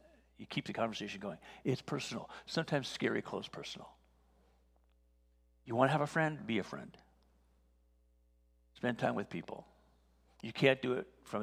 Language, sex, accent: English, male, American